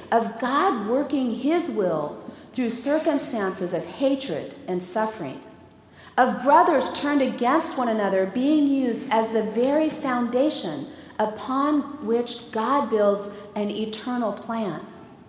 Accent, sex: American, female